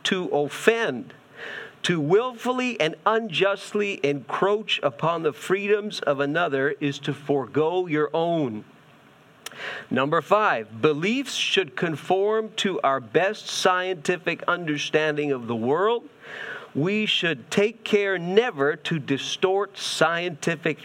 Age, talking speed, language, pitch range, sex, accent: 50-69, 110 wpm, English, 145-205 Hz, male, American